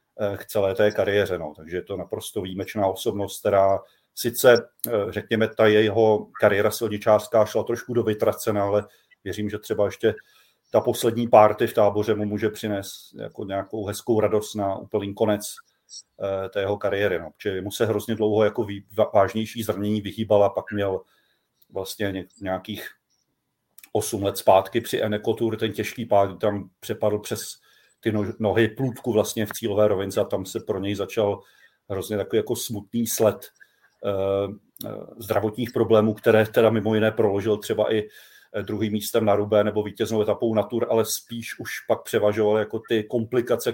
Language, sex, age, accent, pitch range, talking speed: Czech, male, 40-59, native, 100-110 Hz, 160 wpm